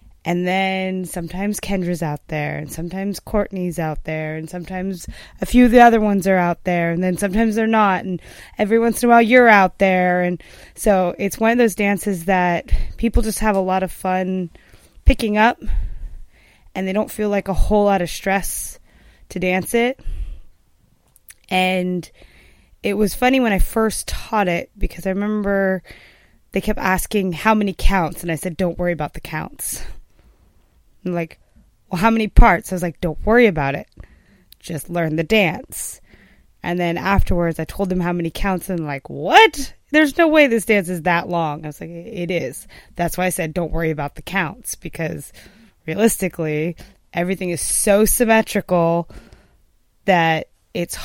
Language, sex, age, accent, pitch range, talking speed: English, female, 20-39, American, 170-210 Hz, 180 wpm